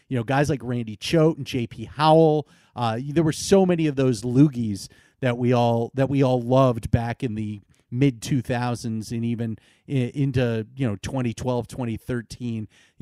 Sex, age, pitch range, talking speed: male, 30-49, 120-155 Hz, 165 wpm